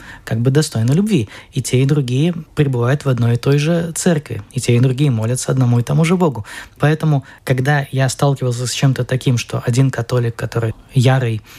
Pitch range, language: 120-145 Hz, Russian